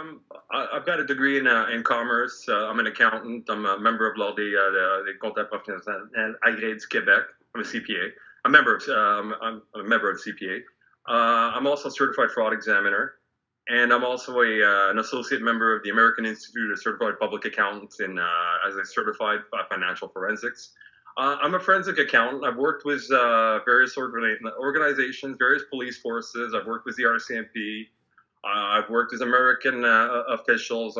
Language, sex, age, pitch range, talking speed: English, male, 30-49, 115-150 Hz, 170 wpm